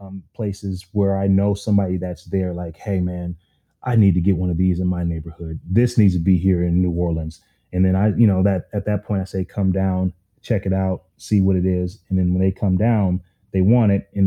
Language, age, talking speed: English, 30-49, 250 wpm